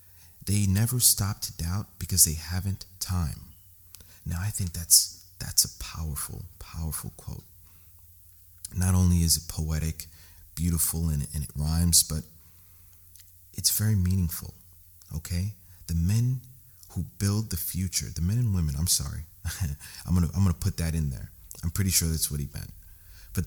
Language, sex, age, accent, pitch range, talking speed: English, male, 40-59, American, 85-95 Hz, 155 wpm